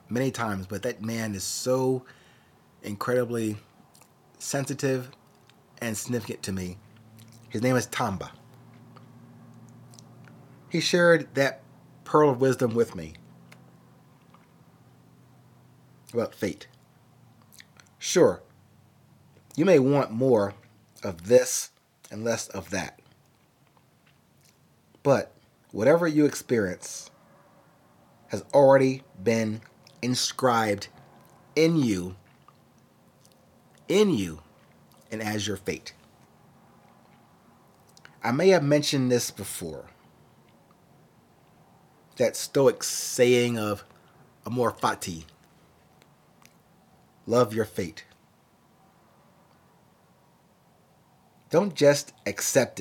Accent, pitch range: American, 105-135 Hz